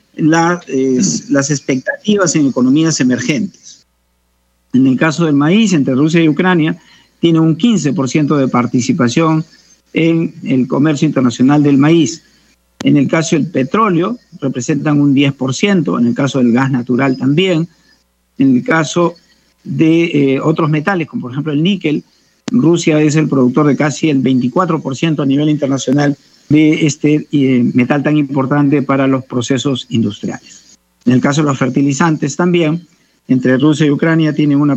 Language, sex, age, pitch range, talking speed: Spanish, male, 50-69, 135-165 Hz, 150 wpm